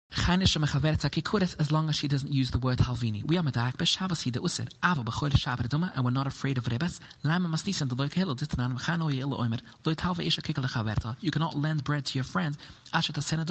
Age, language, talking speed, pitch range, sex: 30-49, English, 105 wpm, 130-170 Hz, male